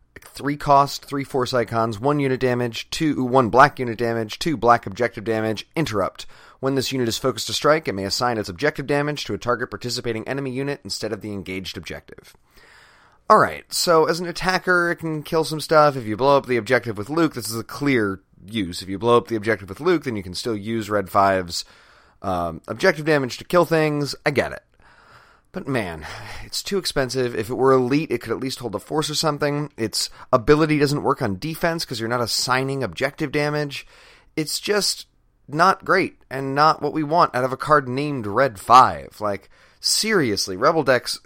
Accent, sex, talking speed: American, male, 205 wpm